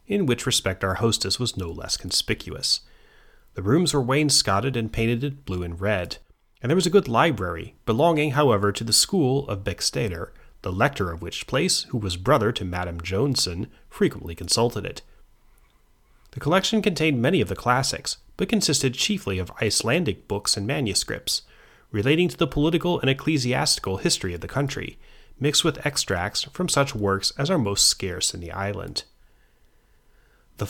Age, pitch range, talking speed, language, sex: 30-49, 95-145 Hz, 165 wpm, English, male